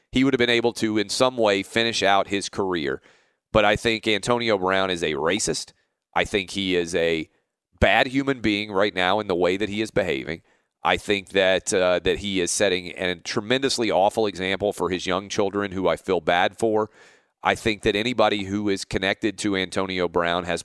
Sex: male